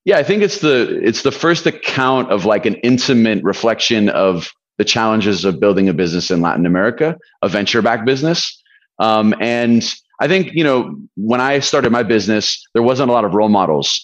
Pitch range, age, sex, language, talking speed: 100-125 Hz, 30-49, male, English, 195 wpm